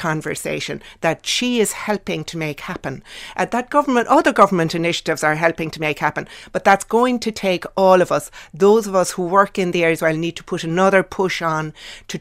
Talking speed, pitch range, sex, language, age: 210 wpm, 160-205 Hz, female, English, 60-79